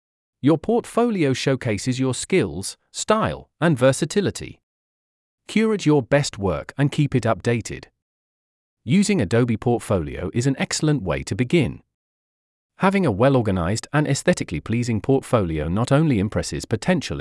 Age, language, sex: 40-59, English, male